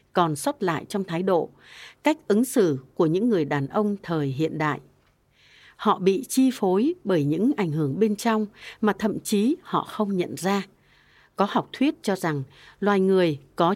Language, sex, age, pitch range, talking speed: Vietnamese, female, 60-79, 160-225 Hz, 185 wpm